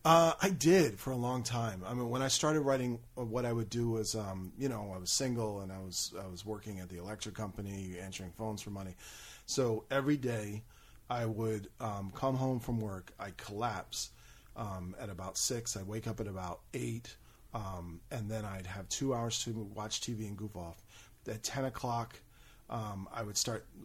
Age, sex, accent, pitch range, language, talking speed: 40-59, male, American, 100-120 Hz, English, 200 wpm